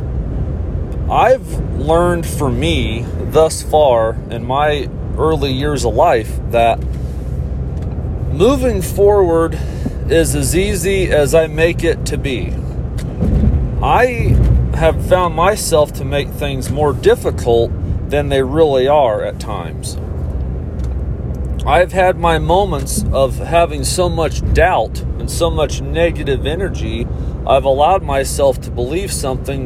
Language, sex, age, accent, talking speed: English, male, 40-59, American, 120 wpm